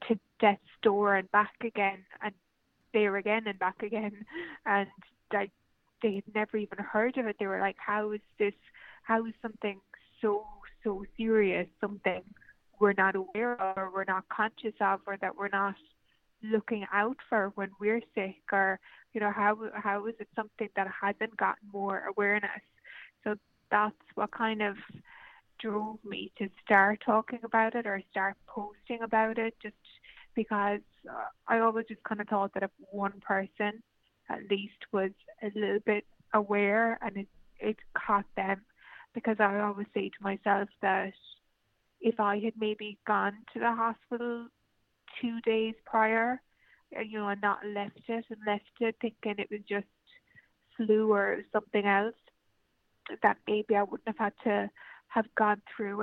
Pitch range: 200-225 Hz